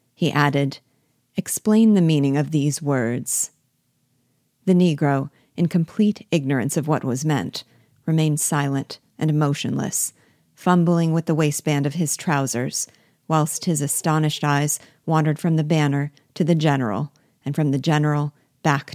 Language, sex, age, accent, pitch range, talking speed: English, female, 40-59, American, 140-165 Hz, 140 wpm